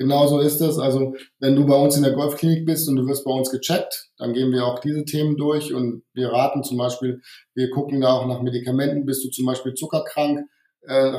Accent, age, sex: German, 20-39, male